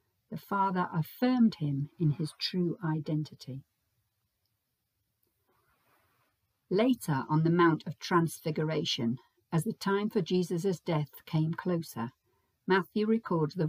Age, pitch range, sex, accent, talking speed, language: 50-69, 125-180 Hz, female, British, 110 wpm, English